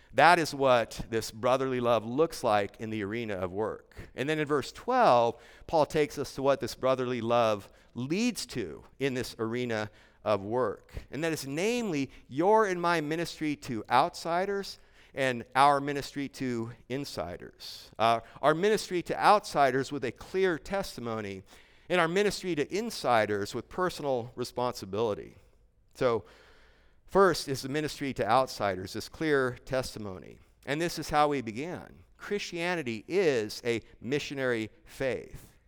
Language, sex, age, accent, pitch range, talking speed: English, male, 50-69, American, 115-165 Hz, 145 wpm